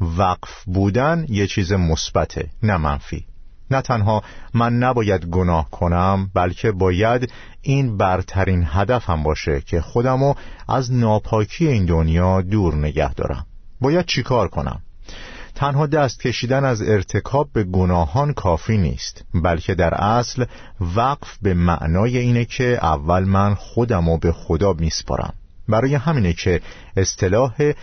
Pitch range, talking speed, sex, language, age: 85-115 Hz, 125 wpm, male, Persian, 50-69